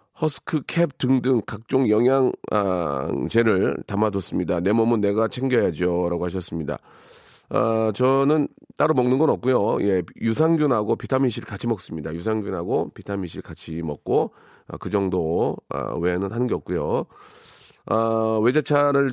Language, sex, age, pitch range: Korean, male, 40-59, 95-125 Hz